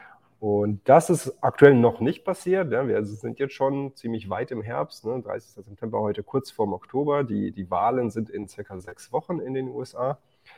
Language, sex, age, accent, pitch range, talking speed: German, male, 30-49, German, 100-120 Hz, 195 wpm